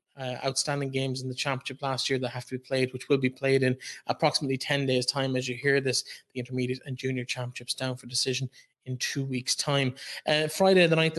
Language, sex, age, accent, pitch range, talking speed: English, male, 20-39, Irish, 130-145 Hz, 225 wpm